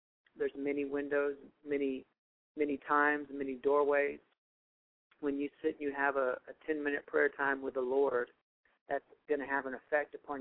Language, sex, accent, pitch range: English, male, American, 130-145 Hz